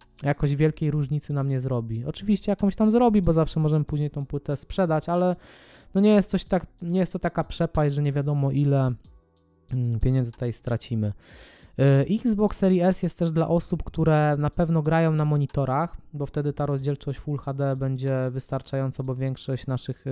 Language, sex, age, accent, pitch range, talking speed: Polish, male, 20-39, native, 125-155 Hz, 175 wpm